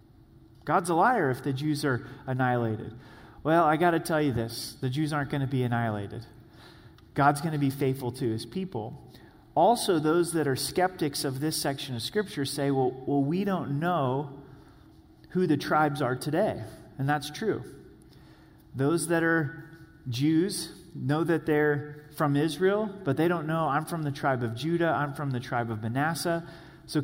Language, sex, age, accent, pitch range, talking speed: English, male, 30-49, American, 130-165 Hz, 180 wpm